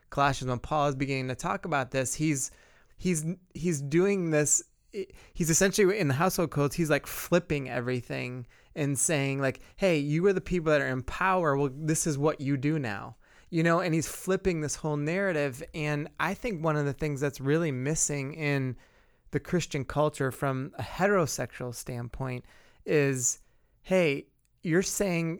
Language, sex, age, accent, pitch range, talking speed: English, male, 20-39, American, 135-160 Hz, 170 wpm